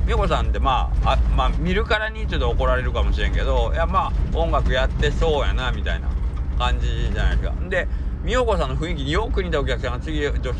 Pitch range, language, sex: 65-75 Hz, Japanese, male